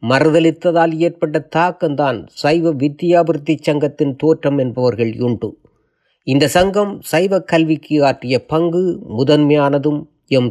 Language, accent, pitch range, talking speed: Tamil, native, 130-170 Hz, 95 wpm